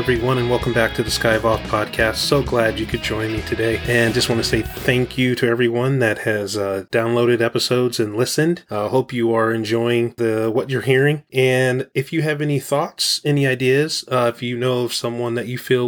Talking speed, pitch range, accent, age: 225 wpm, 115-130 Hz, American, 30-49